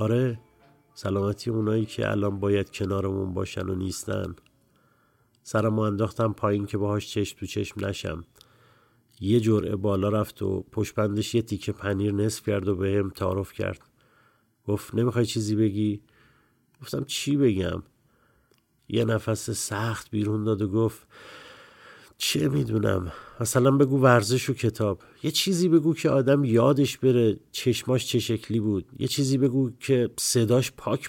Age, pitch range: 50-69, 105-125 Hz